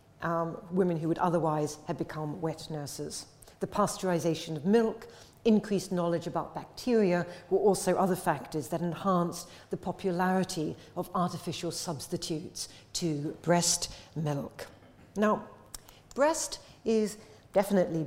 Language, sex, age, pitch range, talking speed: English, female, 60-79, 160-195 Hz, 115 wpm